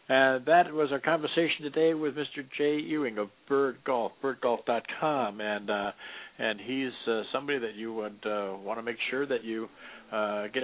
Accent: American